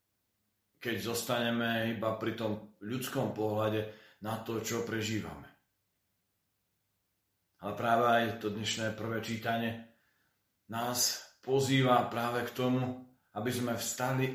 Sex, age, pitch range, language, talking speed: male, 40-59, 100-120 Hz, Slovak, 110 wpm